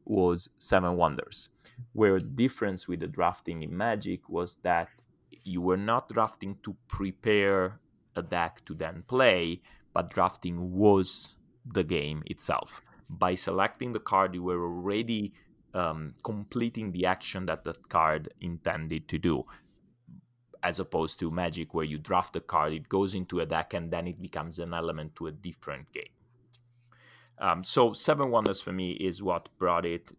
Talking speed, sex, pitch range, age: 160 wpm, male, 85-105 Hz, 30-49